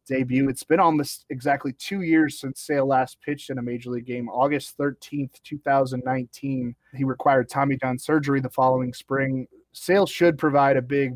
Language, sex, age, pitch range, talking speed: English, male, 20-39, 130-150 Hz, 170 wpm